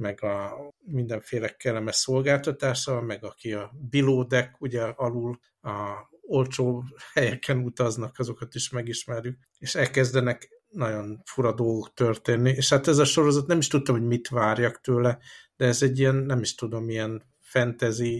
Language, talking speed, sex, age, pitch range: Hungarian, 150 wpm, male, 60-79, 115-130 Hz